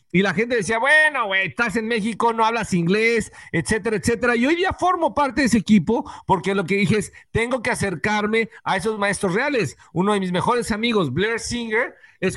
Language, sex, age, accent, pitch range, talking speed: Spanish, male, 50-69, Mexican, 200-250 Hz, 205 wpm